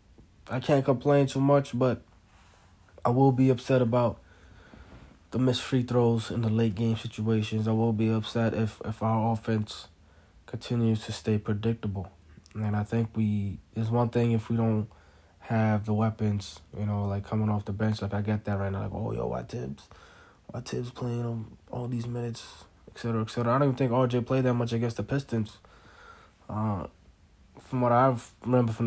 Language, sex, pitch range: English, male, 100-115 Hz